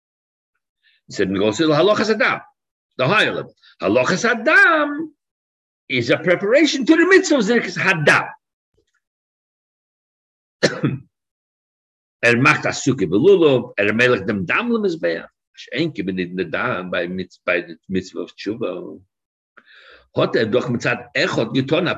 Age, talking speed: 60-79, 115 wpm